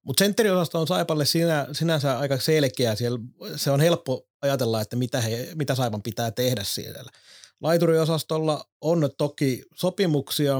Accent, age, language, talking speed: native, 30-49, Finnish, 125 wpm